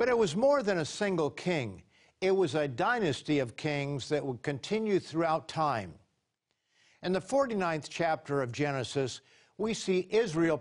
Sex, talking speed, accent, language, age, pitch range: male, 160 wpm, American, English, 50-69, 135-180 Hz